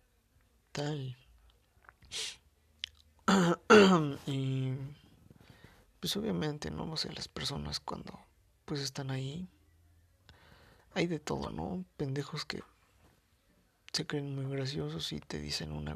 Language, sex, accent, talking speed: Spanish, male, Mexican, 105 wpm